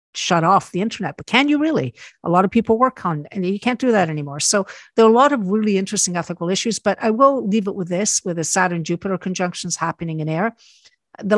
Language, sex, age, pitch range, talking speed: English, female, 50-69, 165-205 Hz, 245 wpm